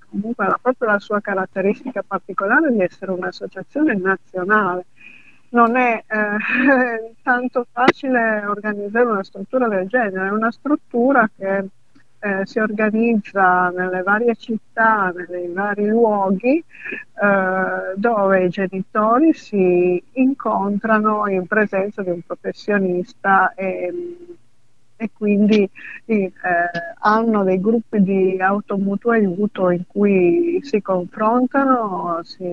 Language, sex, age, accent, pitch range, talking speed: Italian, female, 50-69, native, 185-225 Hz, 115 wpm